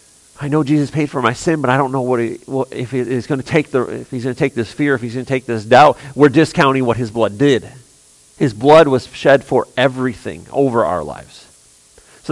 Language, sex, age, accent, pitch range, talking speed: English, male, 40-59, American, 100-145 Hz, 250 wpm